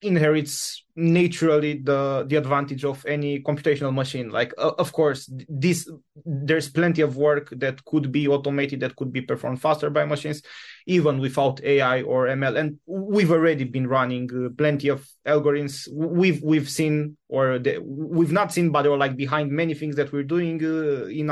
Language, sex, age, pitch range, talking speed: Romanian, male, 20-39, 135-155 Hz, 175 wpm